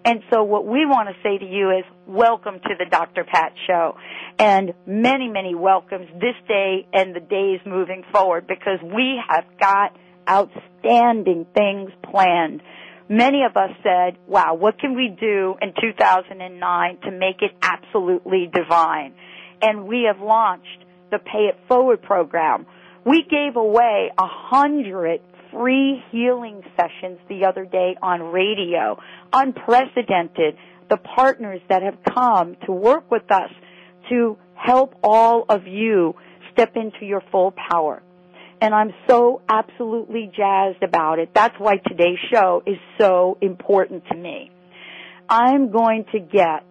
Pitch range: 180-230 Hz